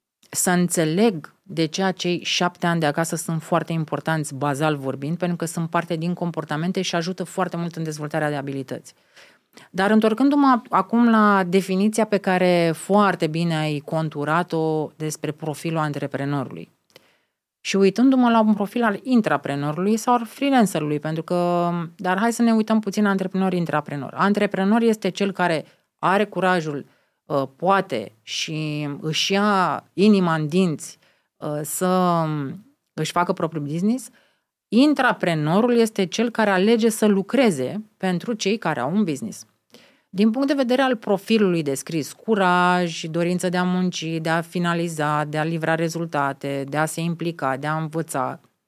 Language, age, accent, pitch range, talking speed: Romanian, 30-49, native, 155-200 Hz, 145 wpm